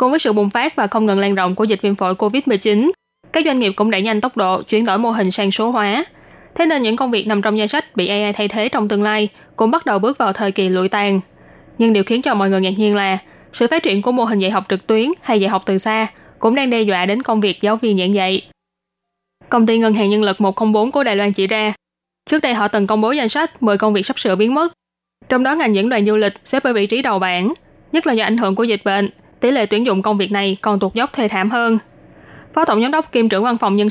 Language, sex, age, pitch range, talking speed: Vietnamese, female, 10-29, 205-240 Hz, 285 wpm